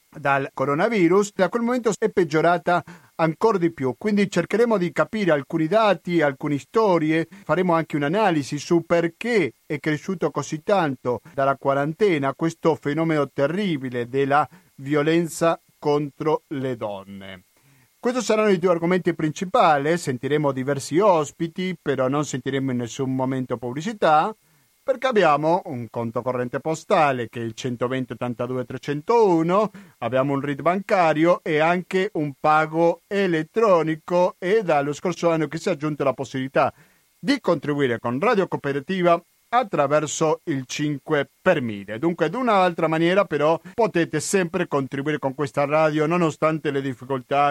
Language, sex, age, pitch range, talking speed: Italian, male, 40-59, 130-170 Hz, 135 wpm